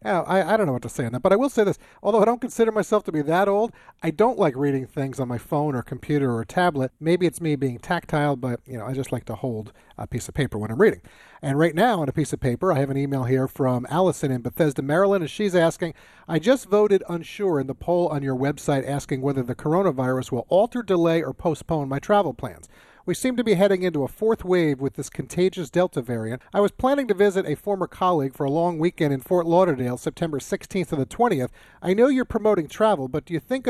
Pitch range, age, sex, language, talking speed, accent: 135-195 Hz, 40-59, male, English, 250 wpm, American